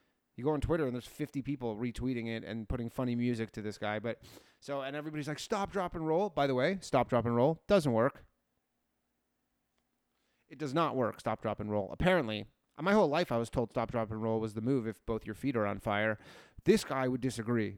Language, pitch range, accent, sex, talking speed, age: English, 110-145 Hz, American, male, 230 wpm, 30-49